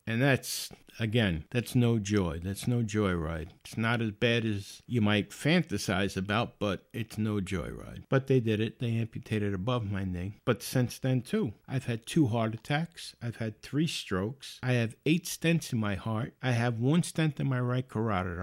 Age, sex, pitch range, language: 50-69, male, 110-160 Hz, English